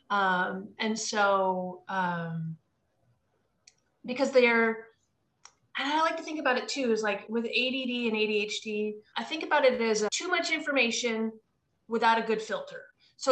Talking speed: 155 wpm